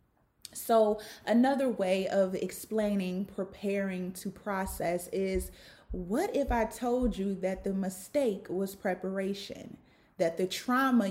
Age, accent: 30-49, American